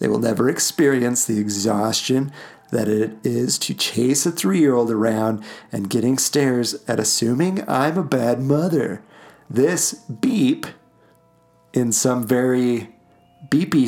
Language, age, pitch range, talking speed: English, 40-59, 115-145 Hz, 125 wpm